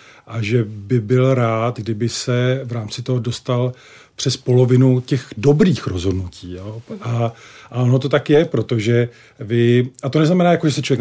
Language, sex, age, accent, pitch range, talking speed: Czech, male, 40-59, native, 115-130 Hz, 175 wpm